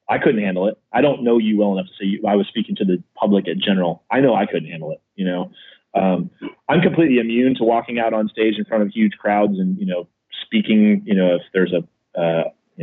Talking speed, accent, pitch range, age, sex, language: 250 wpm, American, 95-120 Hz, 30-49, male, English